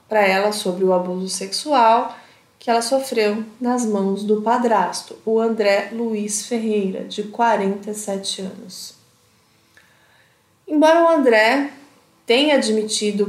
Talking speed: 115 wpm